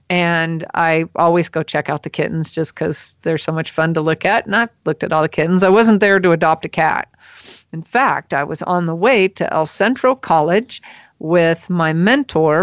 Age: 40-59